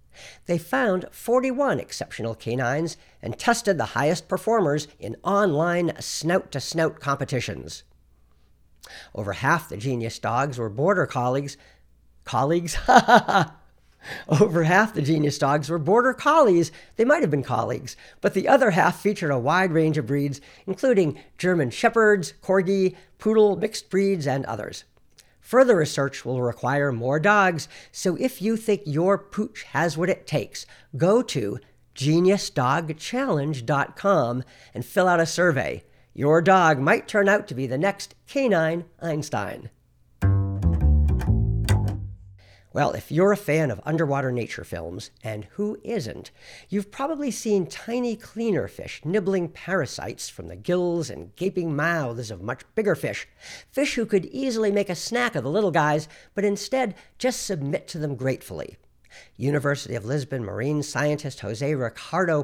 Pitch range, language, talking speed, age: 125-195 Hz, English, 140 wpm, 50-69